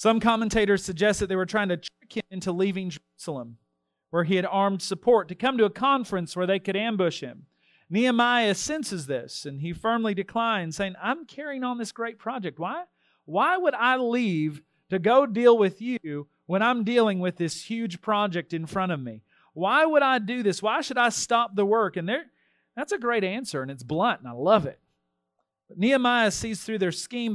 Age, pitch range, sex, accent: 40-59, 160-225 Hz, male, American